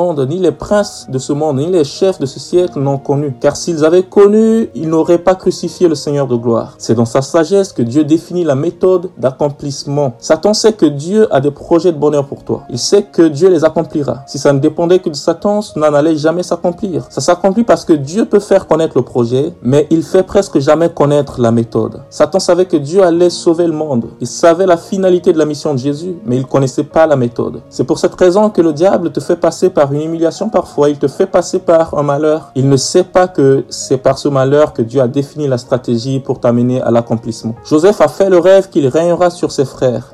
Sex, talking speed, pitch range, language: male, 240 wpm, 135-175 Hz, French